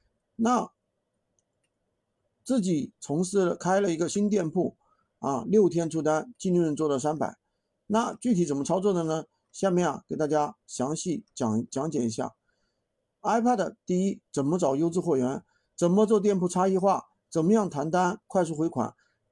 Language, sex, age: Chinese, male, 50-69